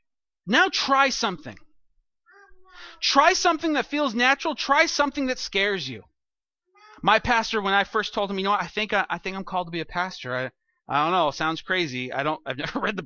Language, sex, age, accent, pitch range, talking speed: English, male, 30-49, American, 160-245 Hz, 215 wpm